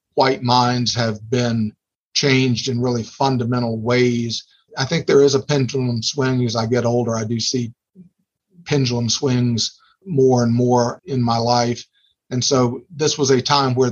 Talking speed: 165 wpm